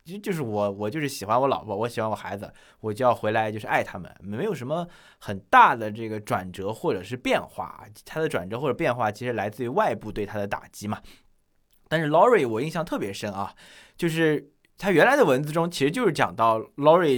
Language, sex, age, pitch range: Chinese, male, 20-39, 110-155 Hz